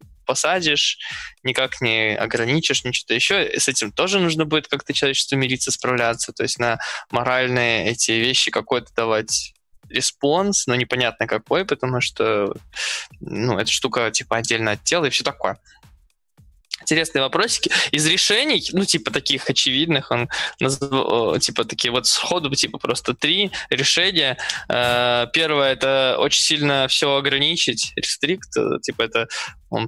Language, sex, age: Russian, male, 20-39